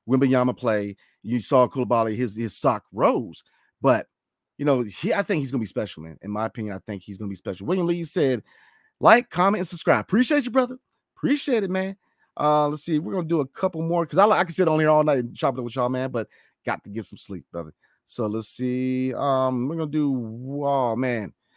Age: 30-49